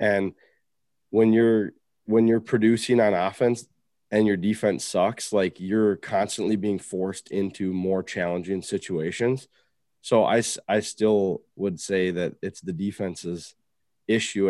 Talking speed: 130 wpm